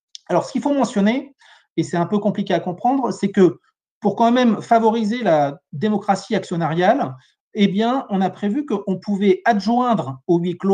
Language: French